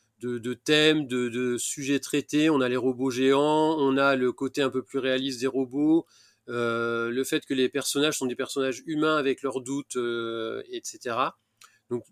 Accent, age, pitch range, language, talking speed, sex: French, 30-49, 115-140 Hz, French, 195 wpm, male